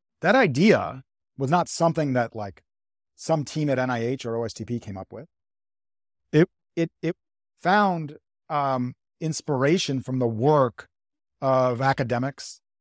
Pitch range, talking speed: 110-145 Hz, 125 wpm